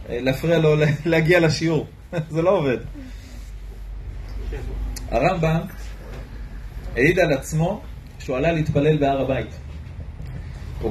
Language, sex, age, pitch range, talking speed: Hebrew, male, 30-49, 145-205 Hz, 95 wpm